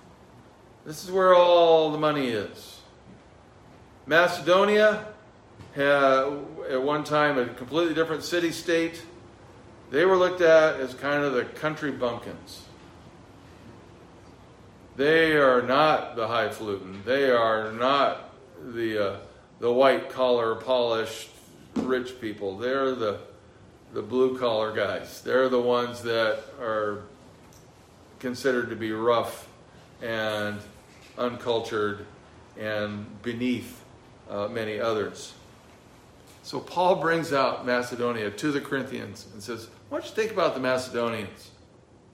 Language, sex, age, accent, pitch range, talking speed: English, male, 40-59, American, 115-160 Hz, 115 wpm